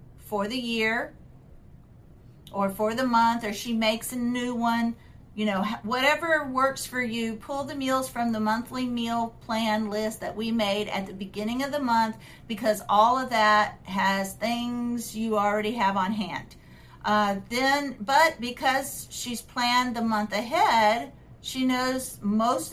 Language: English